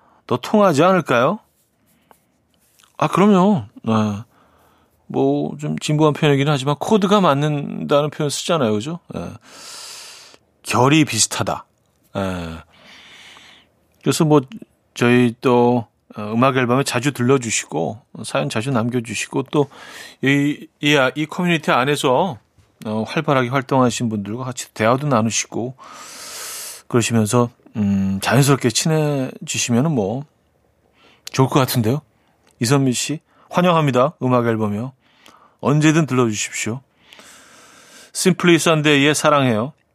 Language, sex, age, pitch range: Korean, male, 40-59, 115-155 Hz